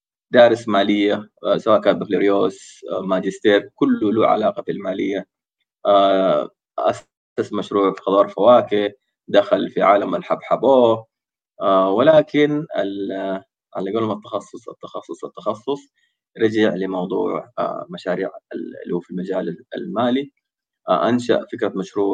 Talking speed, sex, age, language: 100 wpm, male, 20-39, Arabic